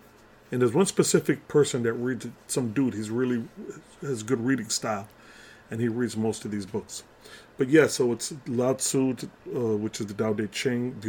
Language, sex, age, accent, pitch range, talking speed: English, male, 30-49, American, 105-125 Hz, 195 wpm